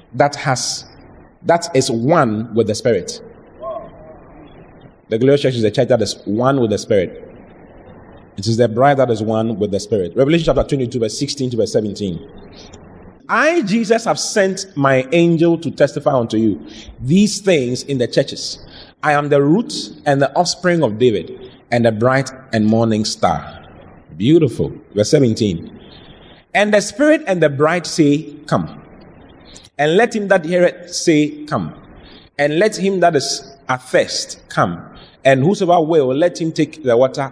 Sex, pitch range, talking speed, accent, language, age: male, 110-160 Hz, 165 wpm, Nigerian, English, 30-49